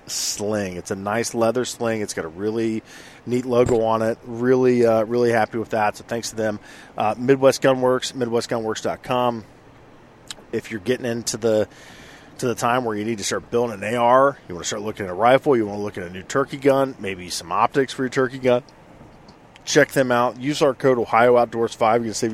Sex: male